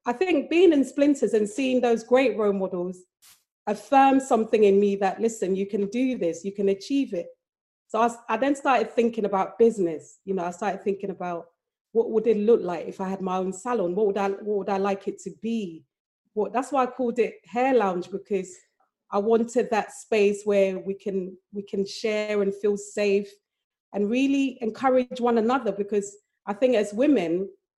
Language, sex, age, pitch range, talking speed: English, female, 30-49, 195-235 Hz, 200 wpm